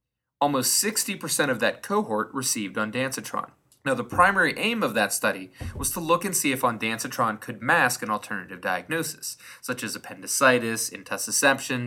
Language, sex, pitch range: English, male, 105-125 Hz